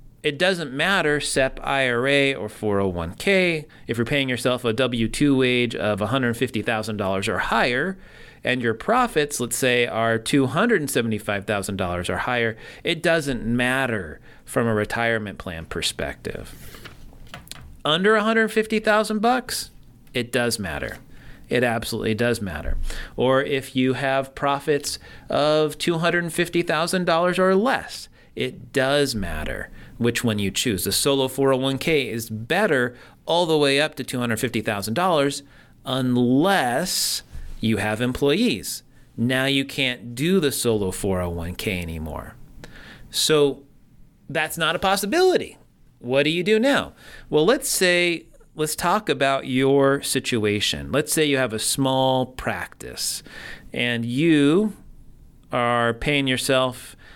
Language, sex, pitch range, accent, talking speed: English, male, 115-150 Hz, American, 120 wpm